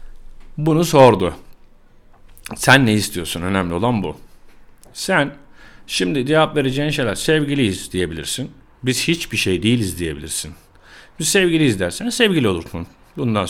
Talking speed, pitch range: 115 wpm, 100-125 Hz